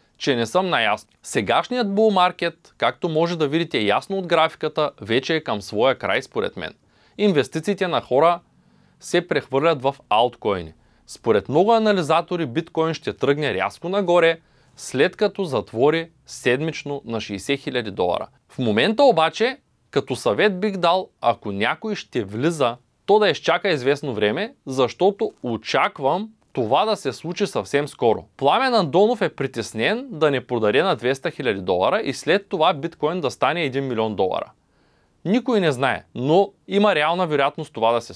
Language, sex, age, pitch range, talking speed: Bulgarian, male, 20-39, 135-190 Hz, 155 wpm